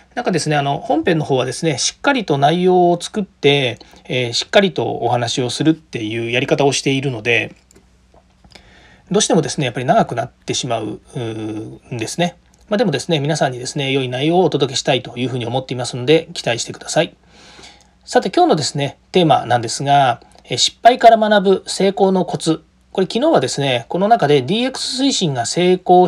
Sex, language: male, Japanese